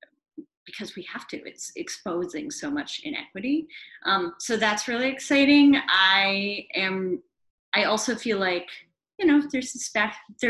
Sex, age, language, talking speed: female, 30-49, English, 150 wpm